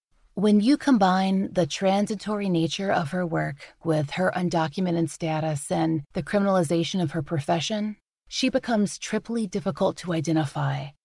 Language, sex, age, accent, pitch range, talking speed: English, female, 30-49, American, 160-195 Hz, 135 wpm